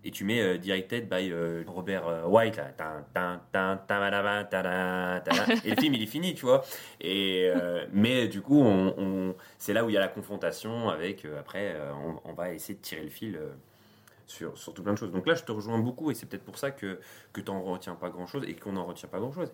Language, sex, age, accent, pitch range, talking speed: French, male, 20-39, French, 90-110 Hz, 225 wpm